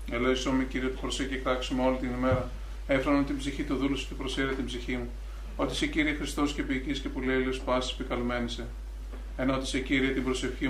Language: Greek